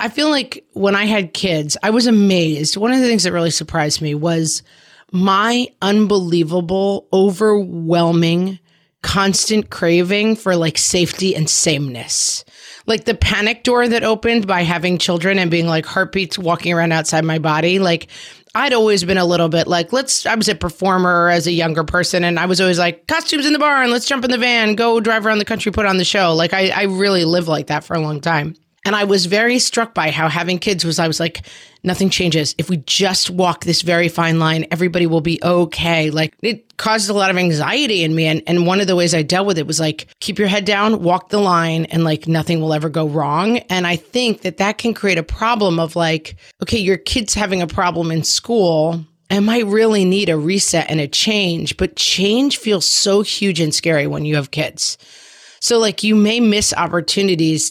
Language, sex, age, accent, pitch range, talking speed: English, female, 30-49, American, 165-210 Hz, 215 wpm